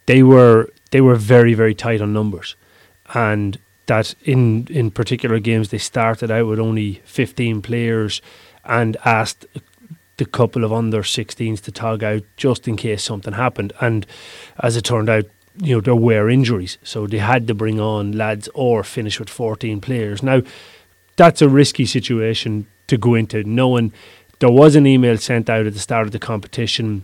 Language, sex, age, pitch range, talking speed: English, male, 30-49, 105-125 Hz, 180 wpm